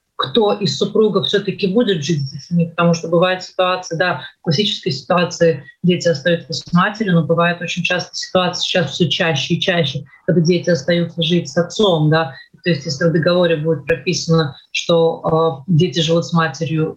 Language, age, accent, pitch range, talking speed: Russian, 30-49, native, 165-195 Hz, 175 wpm